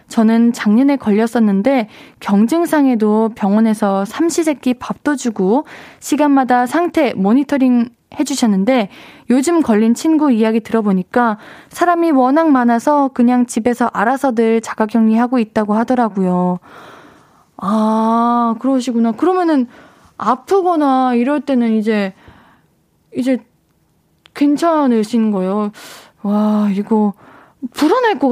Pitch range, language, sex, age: 220-280 Hz, Korean, female, 20-39